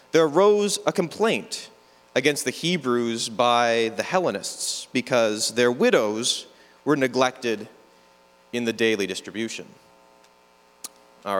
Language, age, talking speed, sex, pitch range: English, 30-49, 105 wpm, male, 115-165 Hz